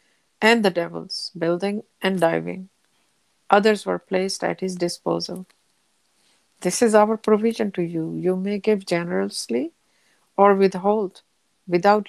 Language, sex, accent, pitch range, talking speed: English, female, Indian, 175-215 Hz, 125 wpm